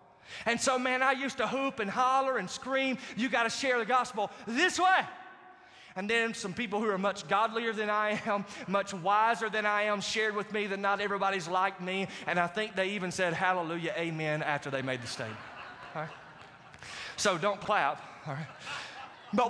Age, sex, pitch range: 20-39, male, 200-265 Hz